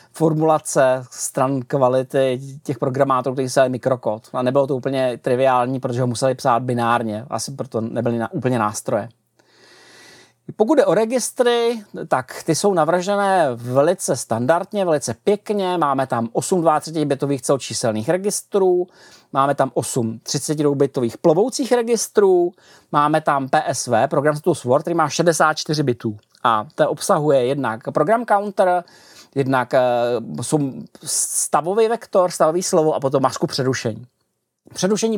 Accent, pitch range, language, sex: native, 135-190 Hz, Czech, male